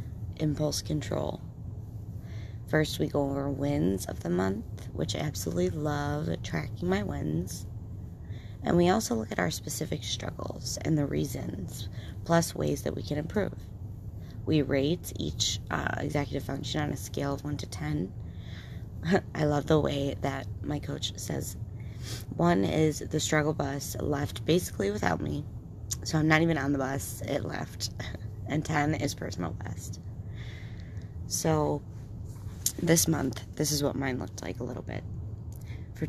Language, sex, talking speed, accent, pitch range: English, female, 150 wpm, American, 100-145 Hz